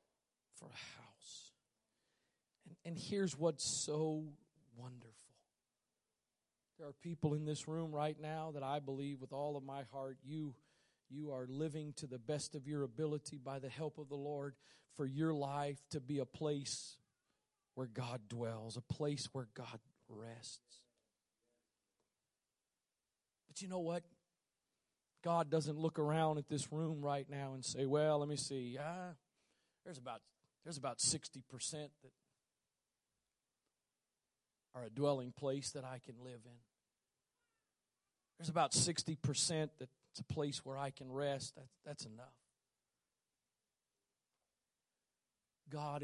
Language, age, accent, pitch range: English, 40-59, American, 130-150 Hz